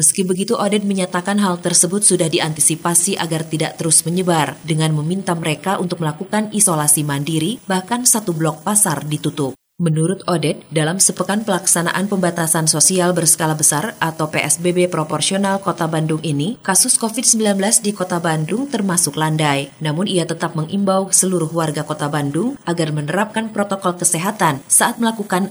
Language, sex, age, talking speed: Indonesian, female, 20-39, 140 wpm